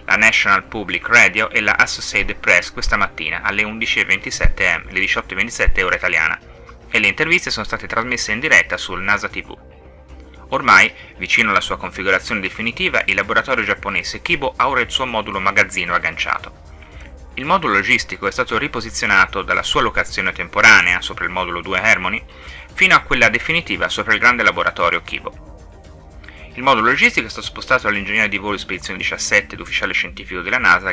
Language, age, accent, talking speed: Italian, 30-49, native, 160 wpm